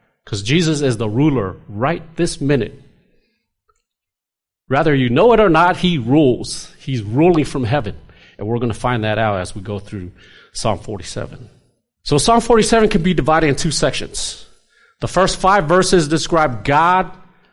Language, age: English, 40-59